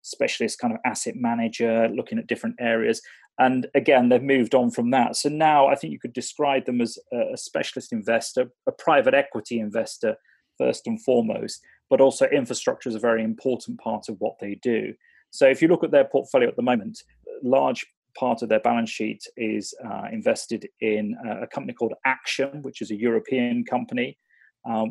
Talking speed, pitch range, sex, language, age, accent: 190 wpm, 110-140 Hz, male, English, 30-49, British